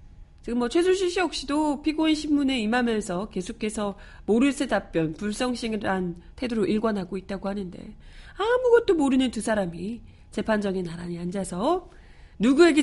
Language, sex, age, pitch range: Korean, female, 40-59, 185-280 Hz